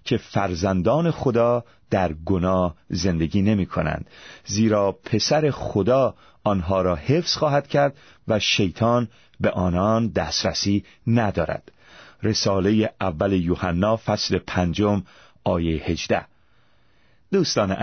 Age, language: 40-59, Persian